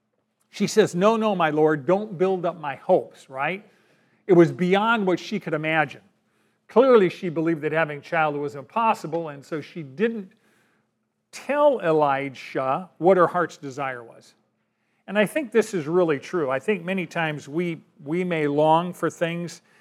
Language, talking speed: English, 170 wpm